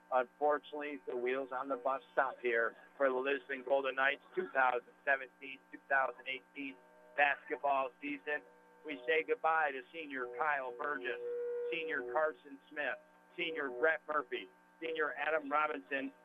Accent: American